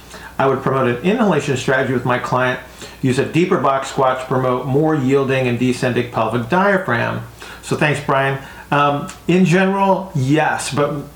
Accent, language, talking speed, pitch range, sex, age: American, English, 160 wpm, 125-145 Hz, male, 40-59